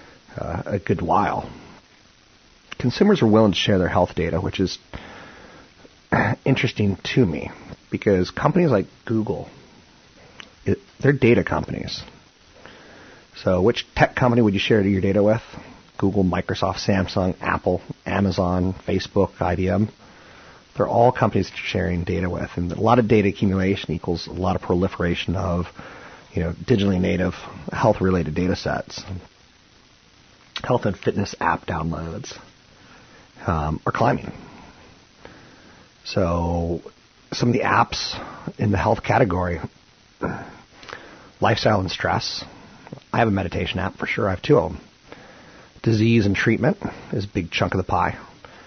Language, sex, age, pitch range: English, male, 30-49, 90-105 Hz